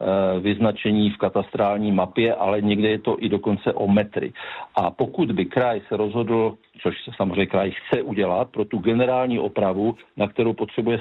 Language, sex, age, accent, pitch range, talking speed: Czech, male, 50-69, native, 105-120 Hz, 170 wpm